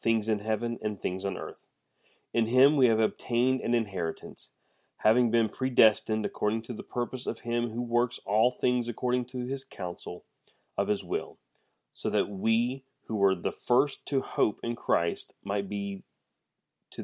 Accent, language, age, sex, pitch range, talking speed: American, English, 30-49, male, 105-130 Hz, 170 wpm